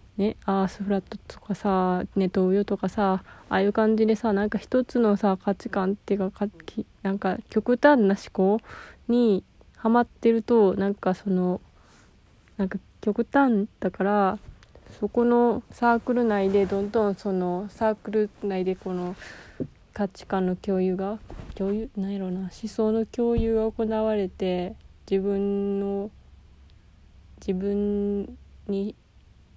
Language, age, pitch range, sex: Japanese, 20-39, 185-215 Hz, female